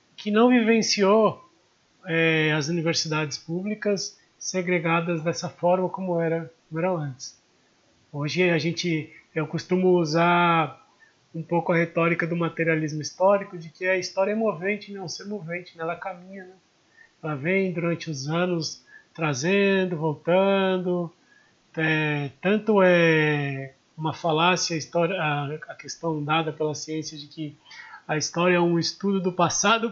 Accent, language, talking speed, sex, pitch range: Brazilian, Portuguese, 140 wpm, male, 160-195 Hz